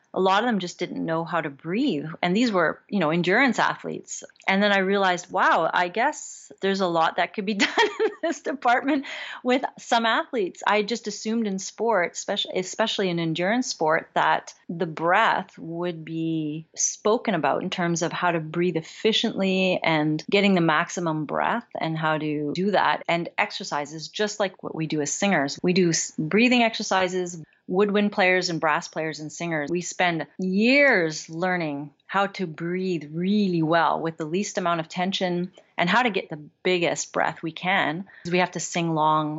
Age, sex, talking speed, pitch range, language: 30-49, female, 180 wpm, 160-200 Hz, English